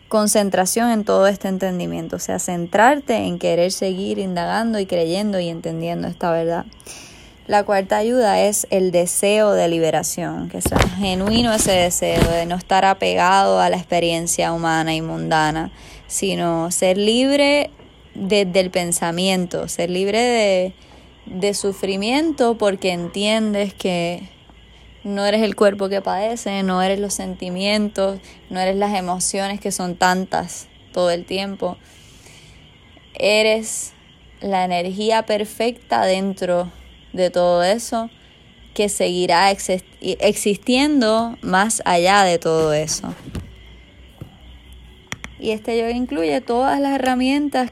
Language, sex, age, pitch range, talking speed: Spanish, female, 20-39, 170-210 Hz, 125 wpm